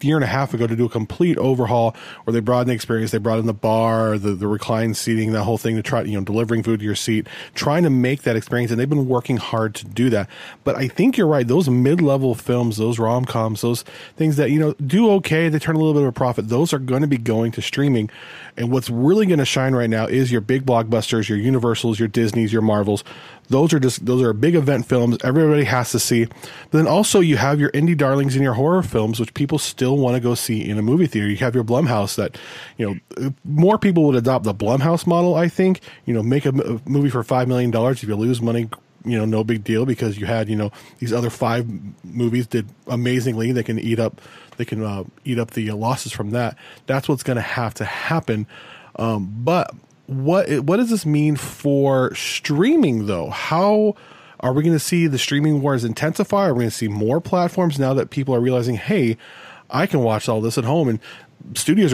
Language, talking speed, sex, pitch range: English, 235 wpm, male, 115-145 Hz